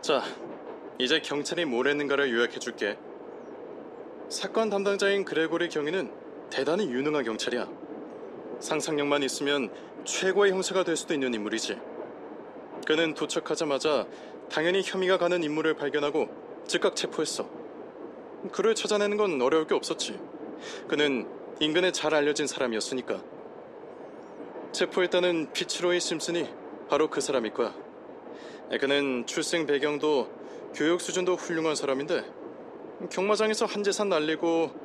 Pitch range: 150-185 Hz